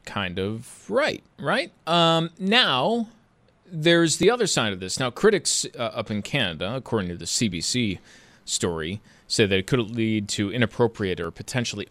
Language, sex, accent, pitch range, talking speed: English, male, American, 105-160 Hz, 160 wpm